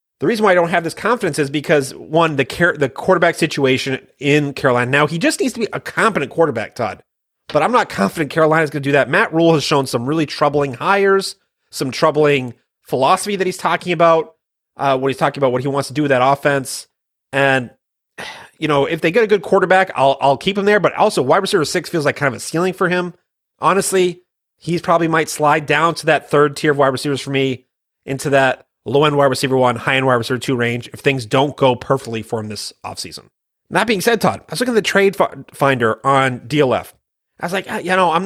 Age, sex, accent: 30-49, male, American